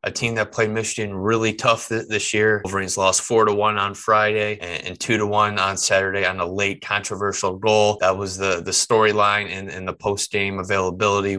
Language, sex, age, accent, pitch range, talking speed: English, male, 20-39, American, 95-105 Hz, 200 wpm